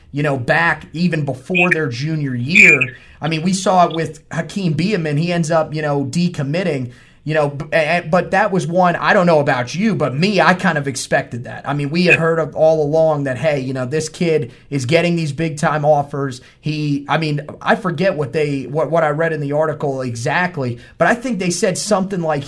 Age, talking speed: 30-49, 220 wpm